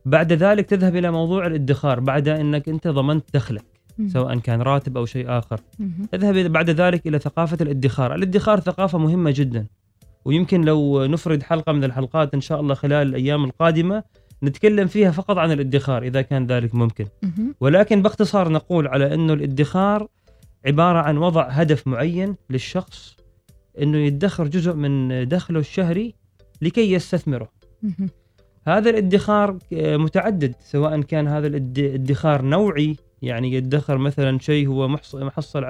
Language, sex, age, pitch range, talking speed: Arabic, male, 20-39, 135-180 Hz, 140 wpm